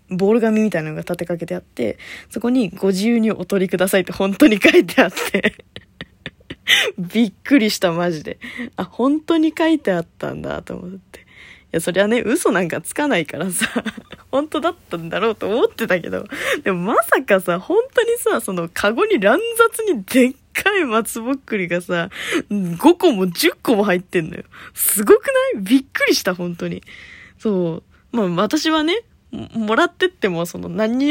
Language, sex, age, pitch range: Japanese, female, 20-39, 170-270 Hz